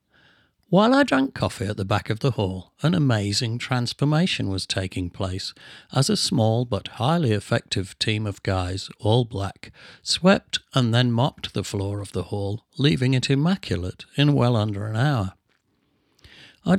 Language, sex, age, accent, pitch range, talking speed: English, male, 60-79, British, 100-125 Hz, 160 wpm